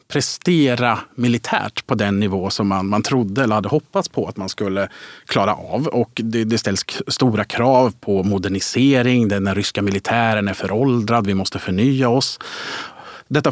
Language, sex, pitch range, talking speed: Swedish, male, 100-125 Hz, 160 wpm